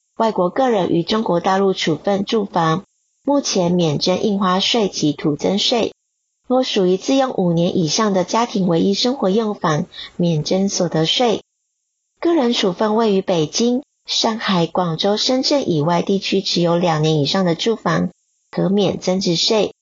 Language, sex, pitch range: Chinese, female, 175-220 Hz